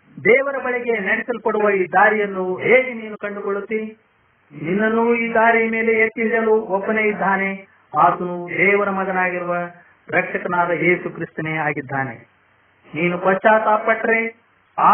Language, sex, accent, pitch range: Hindi, male, native, 185-225 Hz